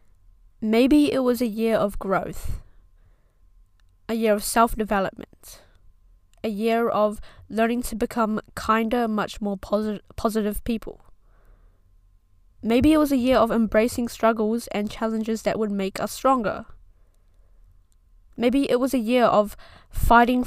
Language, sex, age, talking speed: English, female, 10-29, 130 wpm